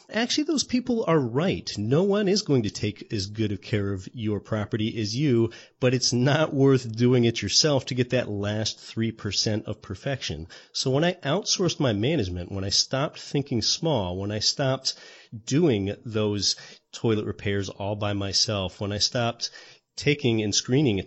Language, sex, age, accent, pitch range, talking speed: English, male, 30-49, American, 100-130 Hz, 175 wpm